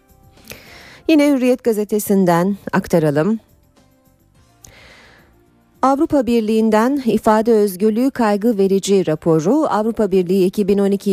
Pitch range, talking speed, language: 155-210 Hz, 75 wpm, Turkish